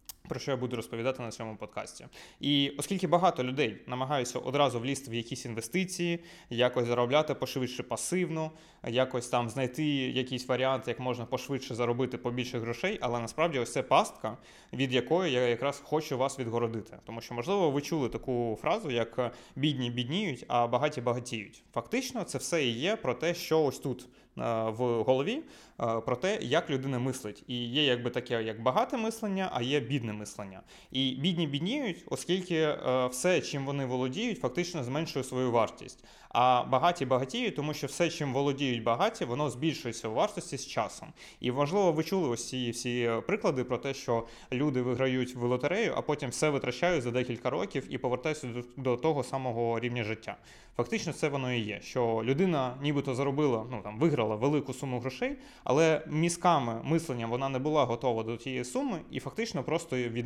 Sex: male